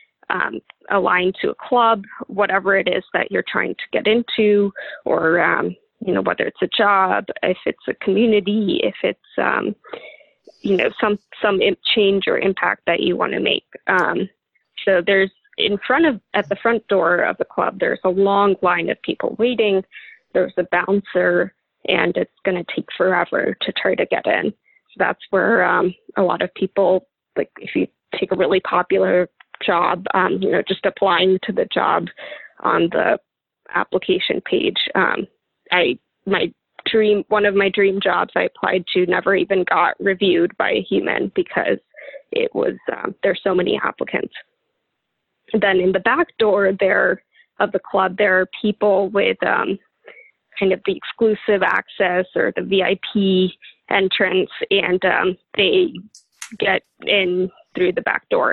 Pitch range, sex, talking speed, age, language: 190-230 Hz, female, 170 wpm, 20-39, English